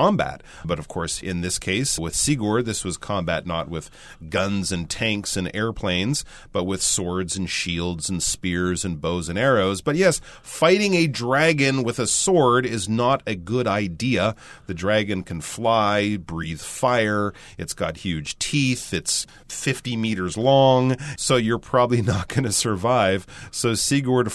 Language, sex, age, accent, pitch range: Chinese, male, 40-59, American, 95-125 Hz